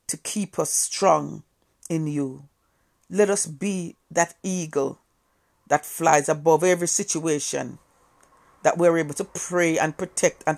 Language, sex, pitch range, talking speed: English, female, 140-175 Hz, 135 wpm